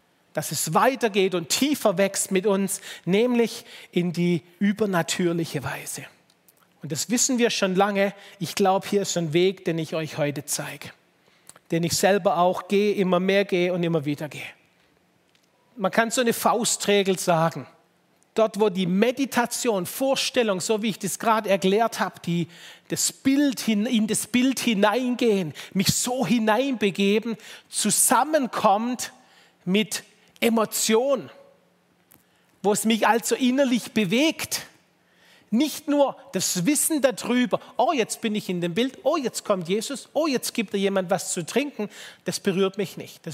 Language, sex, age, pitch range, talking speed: German, male, 40-59, 190-245 Hz, 150 wpm